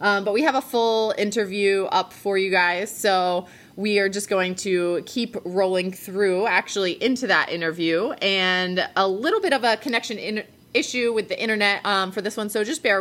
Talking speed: 195 wpm